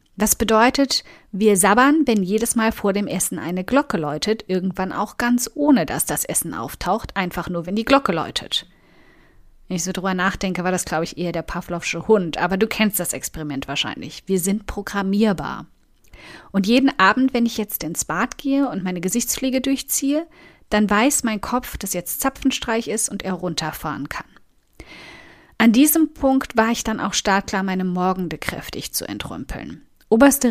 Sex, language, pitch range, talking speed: female, German, 180-230 Hz, 175 wpm